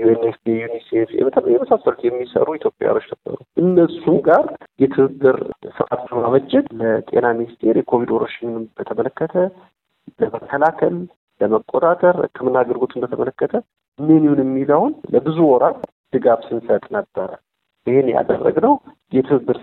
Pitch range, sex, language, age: 115-160 Hz, male, Amharic, 50-69